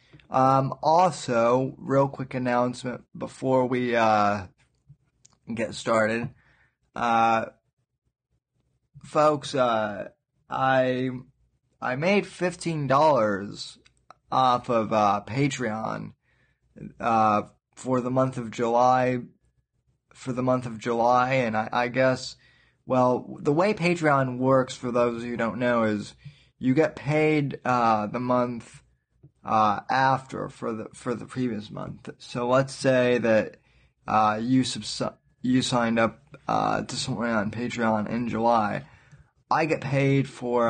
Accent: American